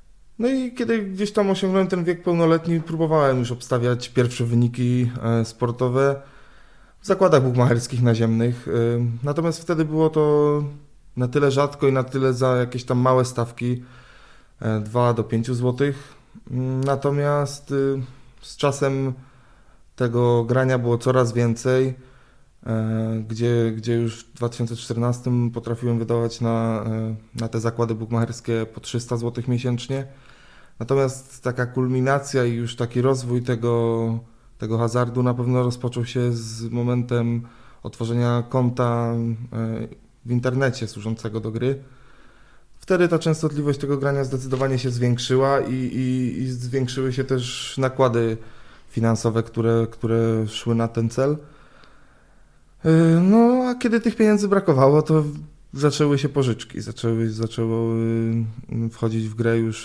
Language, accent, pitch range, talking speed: Polish, native, 115-135 Hz, 125 wpm